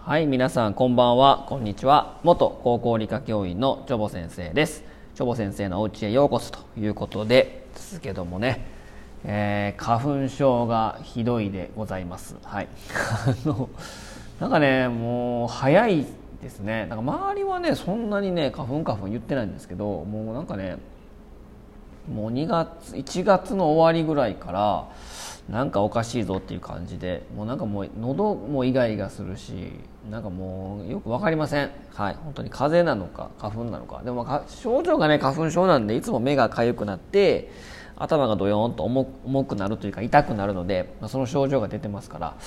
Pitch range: 105-140 Hz